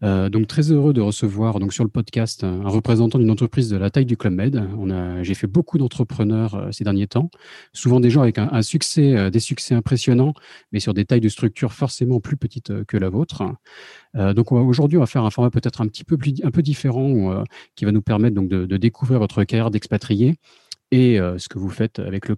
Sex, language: male, French